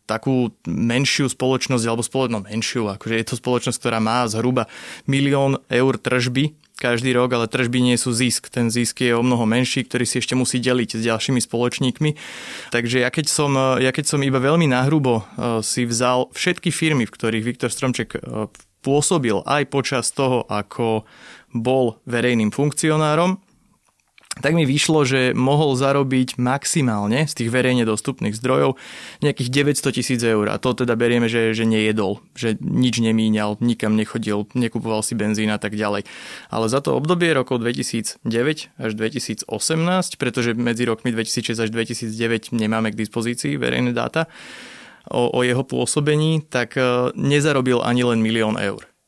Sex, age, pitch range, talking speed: male, 20-39, 115-135 Hz, 150 wpm